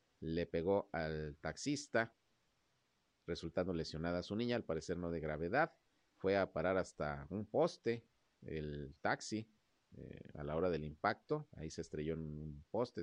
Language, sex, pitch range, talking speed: Spanish, male, 85-115 Hz, 150 wpm